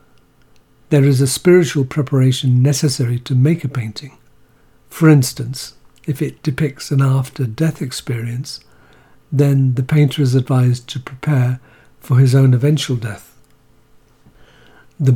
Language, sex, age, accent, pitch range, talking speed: English, male, 60-79, British, 130-150 Hz, 125 wpm